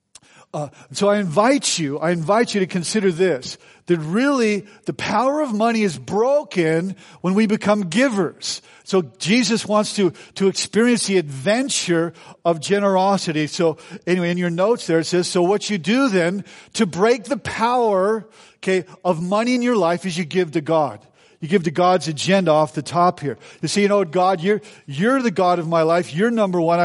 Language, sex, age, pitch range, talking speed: English, male, 50-69, 165-200 Hz, 190 wpm